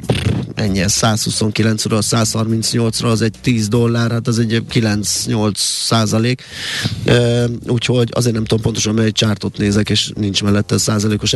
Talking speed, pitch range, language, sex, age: 145 wpm, 105-125 Hz, Hungarian, male, 20-39